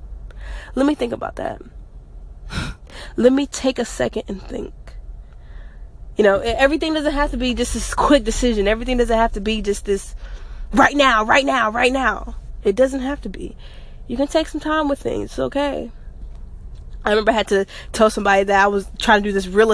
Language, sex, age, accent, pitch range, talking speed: English, female, 20-39, American, 205-280 Hz, 200 wpm